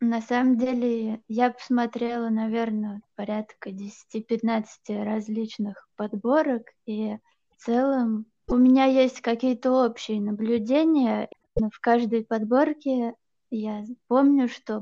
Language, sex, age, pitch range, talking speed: Russian, female, 20-39, 215-245 Hz, 100 wpm